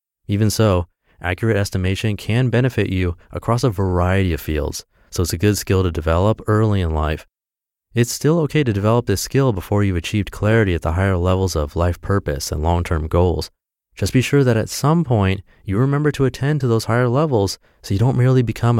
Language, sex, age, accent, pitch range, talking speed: English, male, 30-49, American, 90-115 Hz, 200 wpm